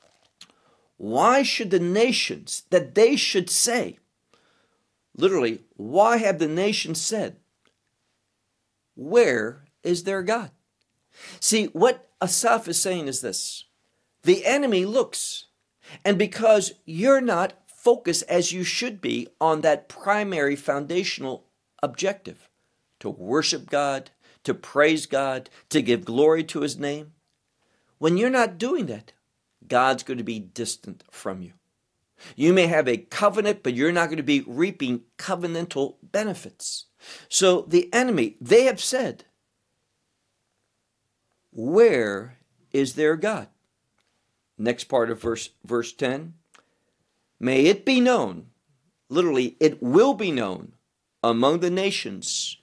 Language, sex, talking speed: English, male, 125 wpm